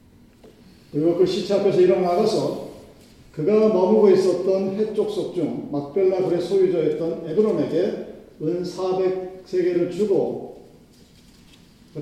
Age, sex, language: 40-59, male, Korean